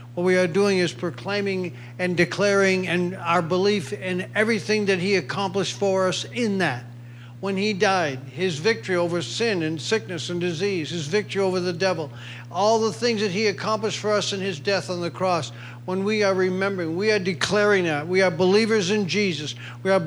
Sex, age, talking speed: male, 50-69, 195 wpm